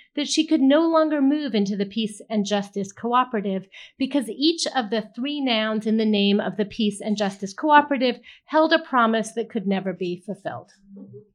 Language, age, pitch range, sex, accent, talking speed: English, 30-49, 210-280 Hz, female, American, 185 wpm